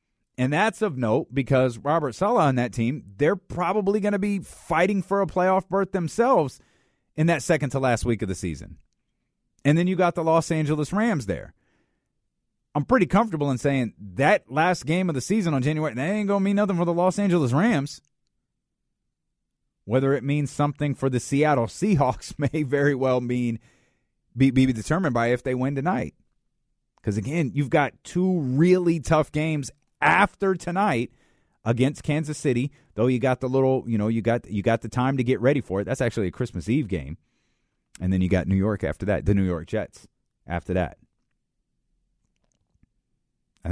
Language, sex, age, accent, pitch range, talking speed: English, male, 30-49, American, 95-155 Hz, 185 wpm